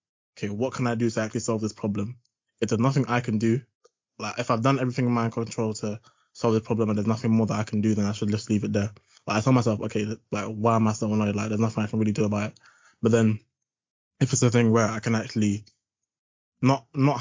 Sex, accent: male, British